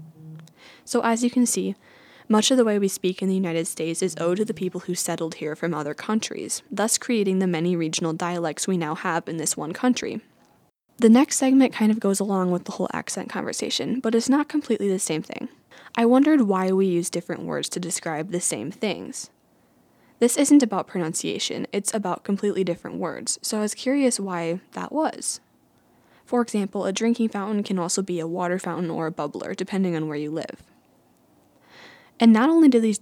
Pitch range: 175-230 Hz